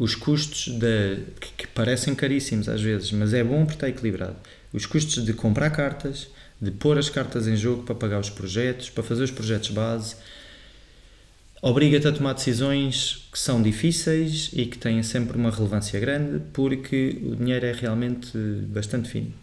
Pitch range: 110-130 Hz